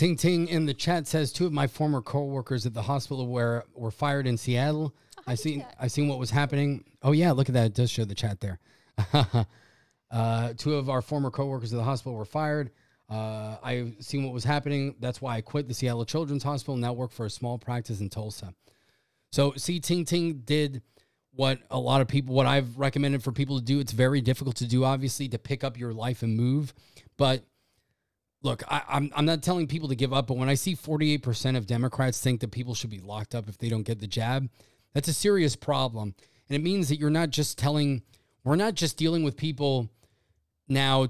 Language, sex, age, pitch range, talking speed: English, male, 20-39, 115-145 Hz, 220 wpm